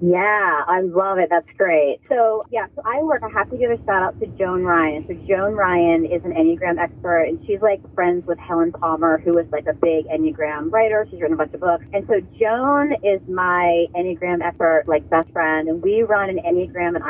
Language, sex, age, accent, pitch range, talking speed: English, female, 30-49, American, 170-265 Hz, 225 wpm